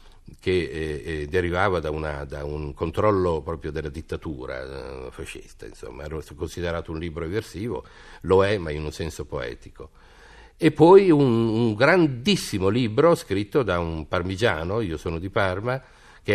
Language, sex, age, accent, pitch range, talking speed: Italian, male, 50-69, native, 80-100 Hz, 145 wpm